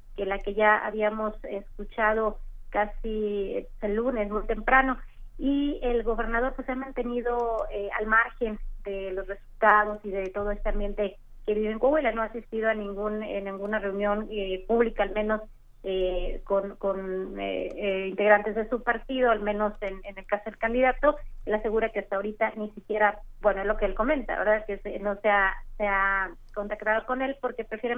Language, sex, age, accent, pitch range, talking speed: Spanish, female, 30-49, Mexican, 210-235 Hz, 180 wpm